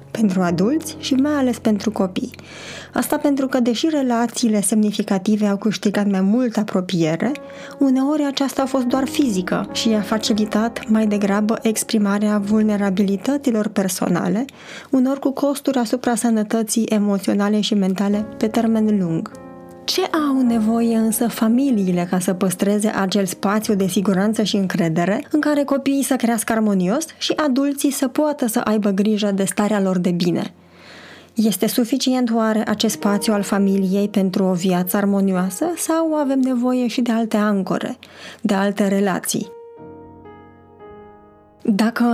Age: 20-39